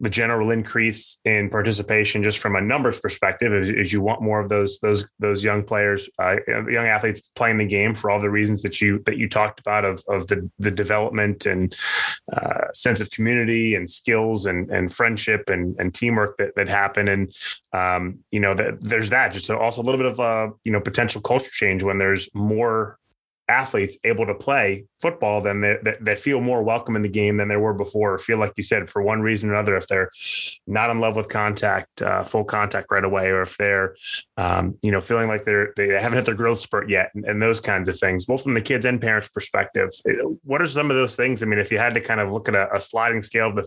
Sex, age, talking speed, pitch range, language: male, 20-39, 240 wpm, 100-115 Hz, English